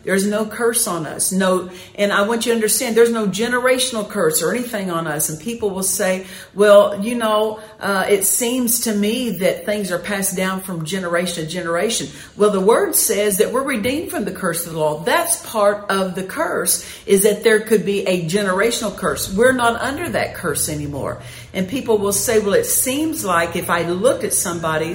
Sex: female